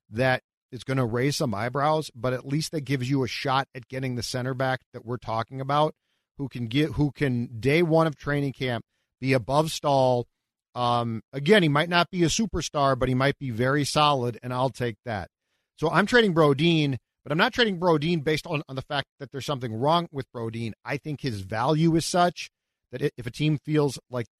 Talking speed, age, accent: 215 wpm, 40-59, American